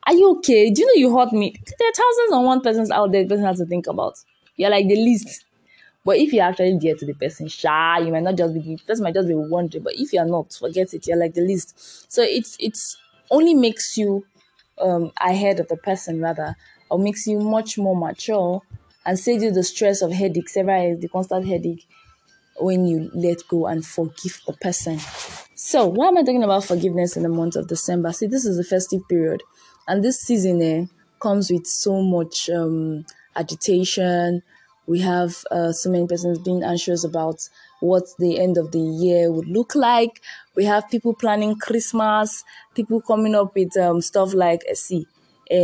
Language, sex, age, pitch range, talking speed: English, female, 20-39, 170-210 Hz, 205 wpm